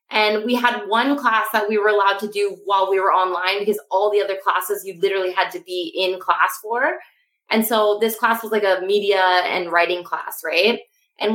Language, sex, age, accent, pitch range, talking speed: English, female, 20-39, American, 205-245 Hz, 215 wpm